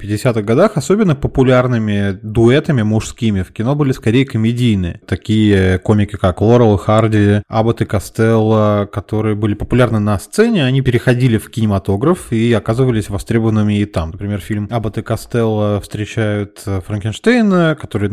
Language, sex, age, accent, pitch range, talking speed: Russian, male, 20-39, native, 100-125 Hz, 135 wpm